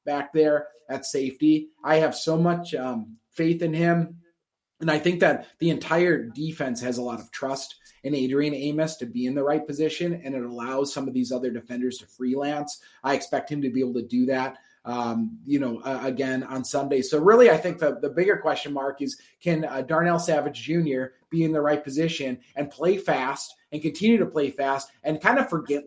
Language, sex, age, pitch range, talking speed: English, male, 30-49, 140-170 Hz, 210 wpm